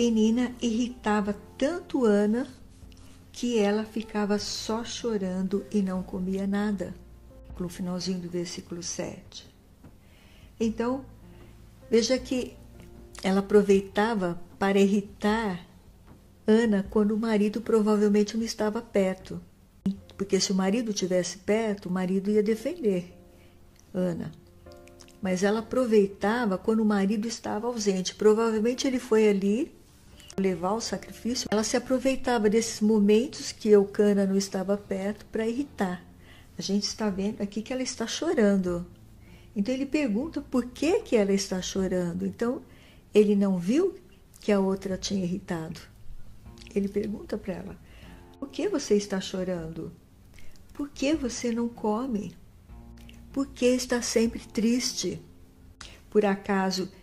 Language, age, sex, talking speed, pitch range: Portuguese, 60-79, female, 125 wpm, 185-225 Hz